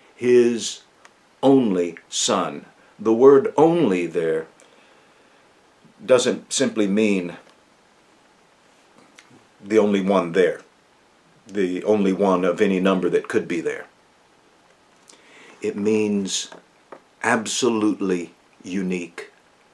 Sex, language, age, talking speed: male, English, 50-69, 85 wpm